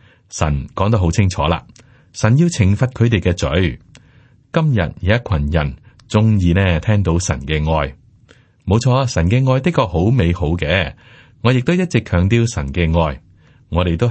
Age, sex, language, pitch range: 30-49, male, Chinese, 85-120 Hz